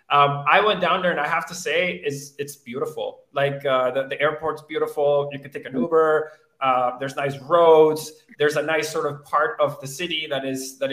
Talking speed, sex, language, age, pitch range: 220 wpm, male, English, 20-39, 140-175 Hz